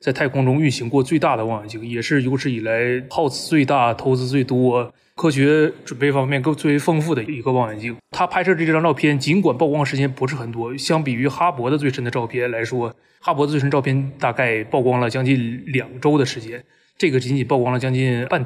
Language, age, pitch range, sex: Chinese, 20-39, 125-150 Hz, male